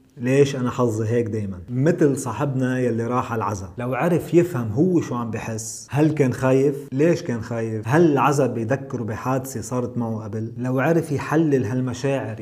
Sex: male